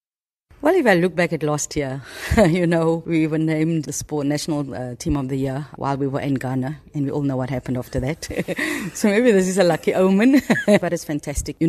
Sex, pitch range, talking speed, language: female, 145-165 Hz, 230 wpm, English